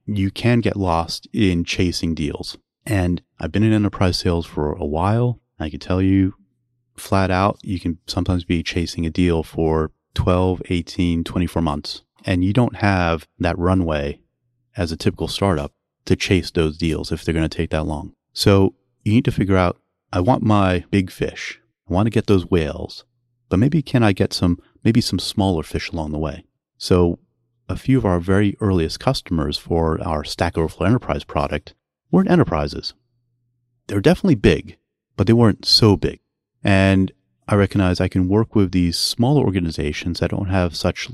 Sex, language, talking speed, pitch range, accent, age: male, English, 180 wpm, 85-105 Hz, American, 30-49